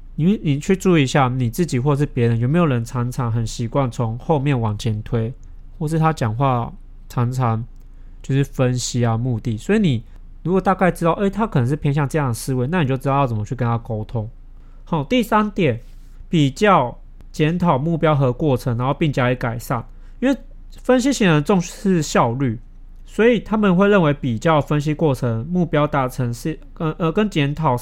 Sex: male